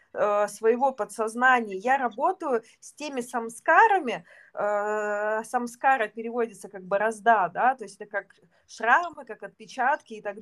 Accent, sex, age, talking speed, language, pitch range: native, female, 20-39, 125 wpm, Russian, 220-285 Hz